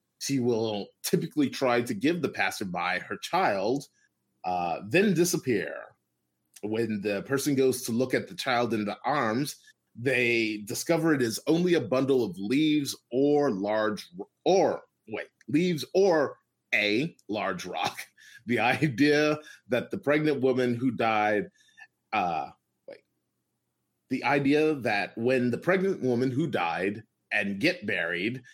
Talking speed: 140 wpm